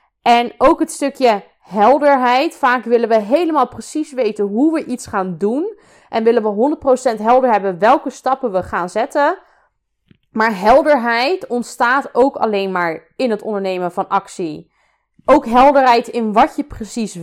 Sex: female